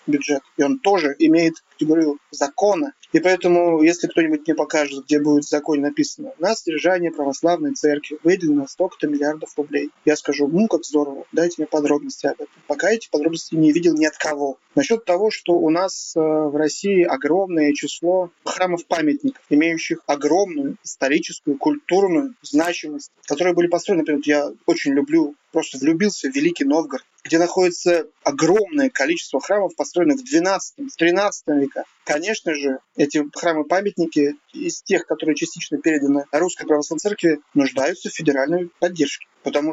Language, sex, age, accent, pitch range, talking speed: Russian, male, 30-49, native, 150-185 Hz, 150 wpm